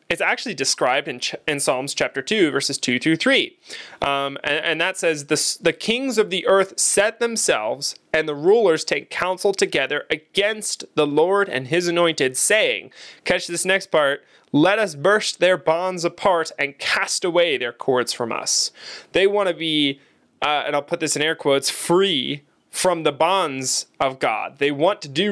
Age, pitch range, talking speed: 20-39, 140-195 Hz, 180 wpm